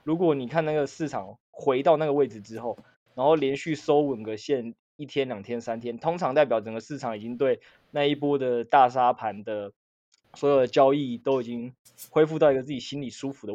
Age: 20-39